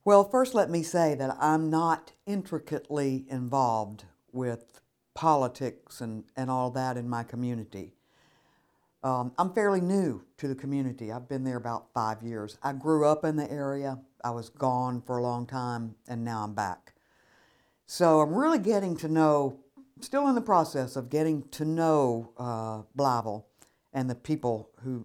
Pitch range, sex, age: 125-165 Hz, female, 60-79